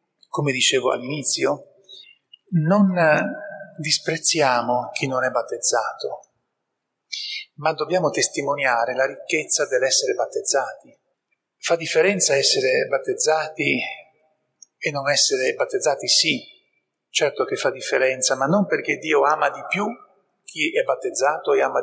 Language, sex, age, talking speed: Italian, male, 40-59, 115 wpm